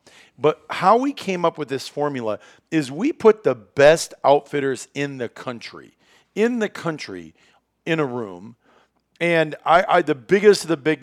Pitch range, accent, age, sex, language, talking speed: 120-160 Hz, American, 40-59, male, English, 170 wpm